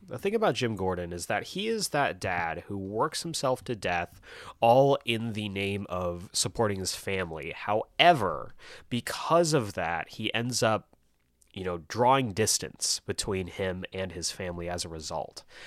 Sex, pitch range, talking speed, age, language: male, 95-120 Hz, 165 wpm, 30-49, English